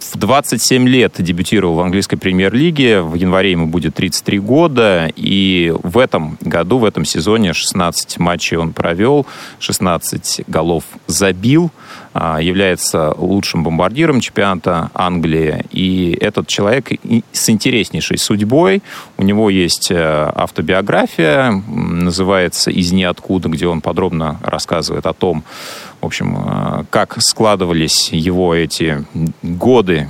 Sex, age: male, 30-49